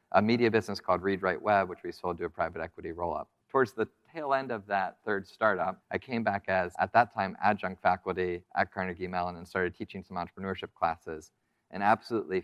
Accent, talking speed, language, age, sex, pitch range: American, 210 wpm, English, 30-49, male, 90-105 Hz